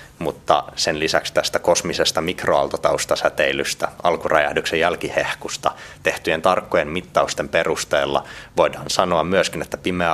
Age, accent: 30-49, native